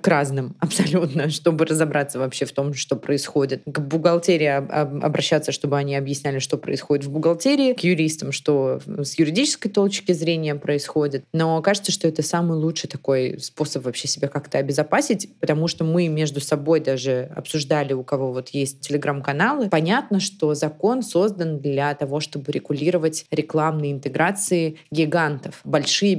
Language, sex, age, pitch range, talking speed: Russian, female, 20-39, 145-170 Hz, 145 wpm